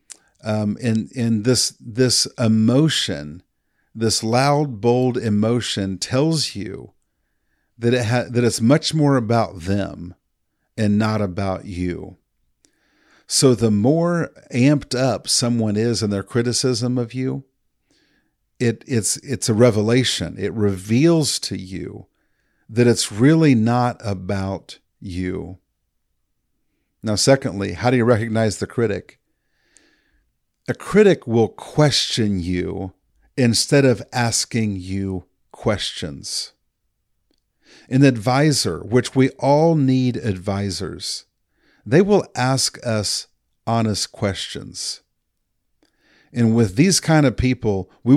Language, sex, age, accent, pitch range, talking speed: English, male, 50-69, American, 100-130 Hz, 110 wpm